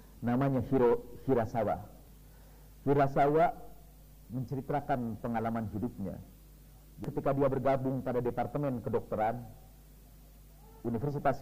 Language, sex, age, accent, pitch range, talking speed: Indonesian, male, 50-69, native, 120-150 Hz, 75 wpm